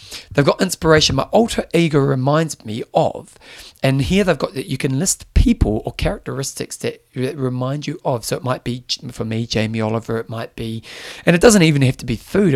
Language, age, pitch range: English, 30-49, 115-145 Hz